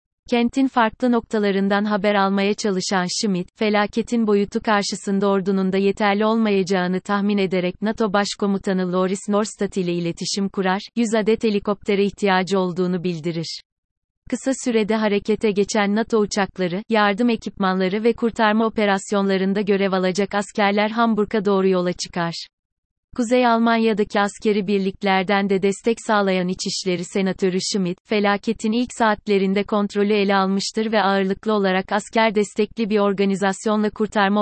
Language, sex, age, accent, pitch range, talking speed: Turkish, female, 30-49, native, 195-220 Hz, 125 wpm